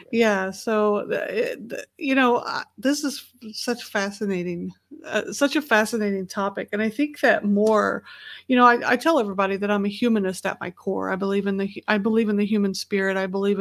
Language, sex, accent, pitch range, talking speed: English, female, American, 200-225 Hz, 190 wpm